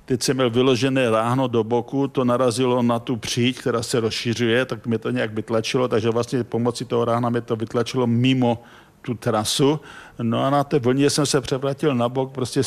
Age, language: 50-69, Czech